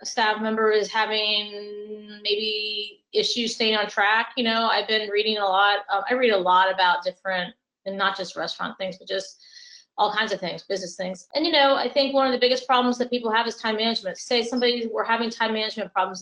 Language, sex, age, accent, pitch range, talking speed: English, female, 30-49, American, 195-235 Hz, 215 wpm